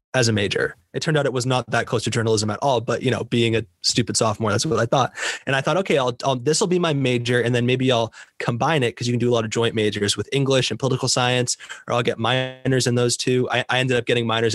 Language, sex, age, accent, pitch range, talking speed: English, male, 20-39, American, 115-135 Hz, 285 wpm